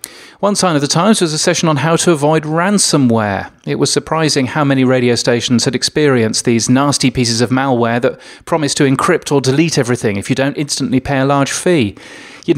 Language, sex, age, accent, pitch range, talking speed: English, male, 30-49, British, 125-155 Hz, 205 wpm